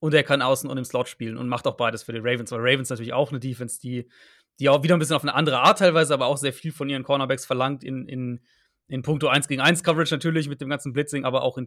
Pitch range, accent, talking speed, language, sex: 130-160 Hz, German, 290 wpm, German, male